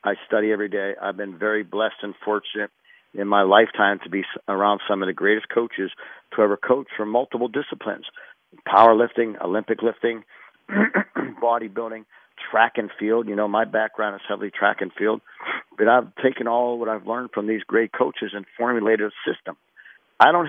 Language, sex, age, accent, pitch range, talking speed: English, male, 50-69, American, 105-125 Hz, 175 wpm